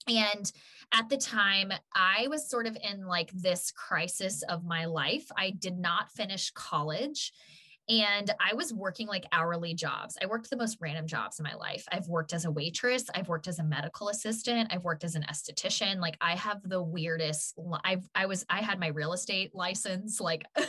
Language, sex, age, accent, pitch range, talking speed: English, female, 10-29, American, 165-220 Hz, 195 wpm